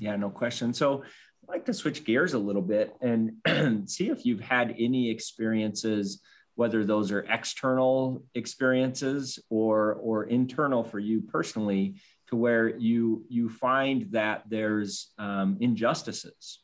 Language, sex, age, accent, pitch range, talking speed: English, male, 30-49, American, 100-115 Hz, 140 wpm